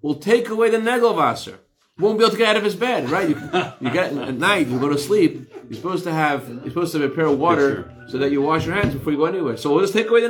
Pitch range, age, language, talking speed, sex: 120-205 Hz, 30-49, English, 305 wpm, male